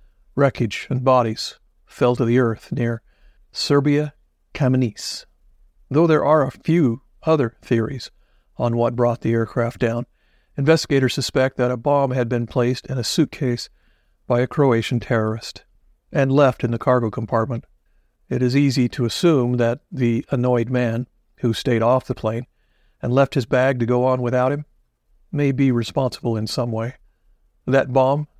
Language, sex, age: English, male, 50-69